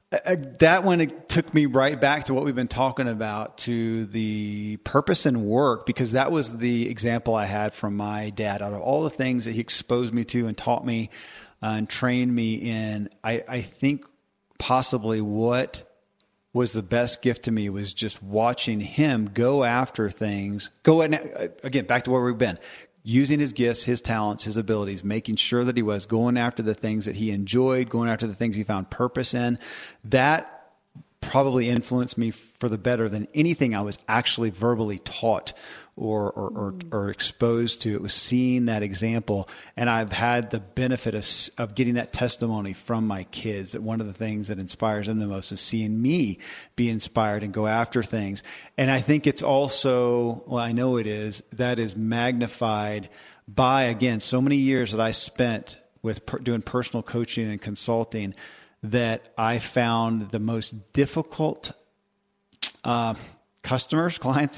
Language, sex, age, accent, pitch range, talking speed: English, male, 40-59, American, 110-125 Hz, 180 wpm